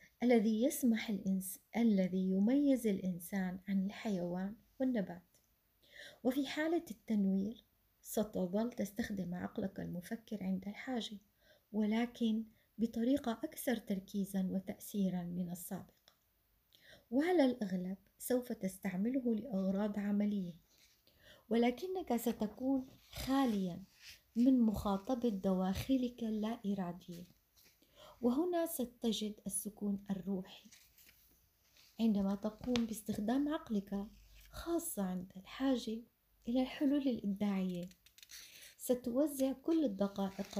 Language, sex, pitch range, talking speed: Arabic, female, 190-245 Hz, 85 wpm